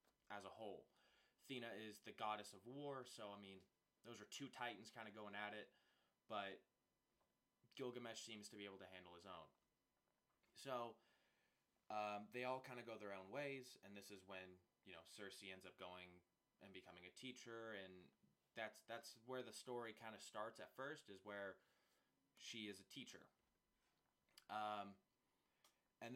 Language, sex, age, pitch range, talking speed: English, male, 20-39, 95-120 Hz, 170 wpm